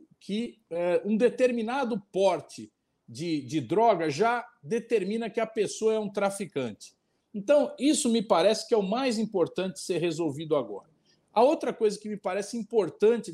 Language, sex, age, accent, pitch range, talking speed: Portuguese, male, 50-69, Brazilian, 180-240 Hz, 160 wpm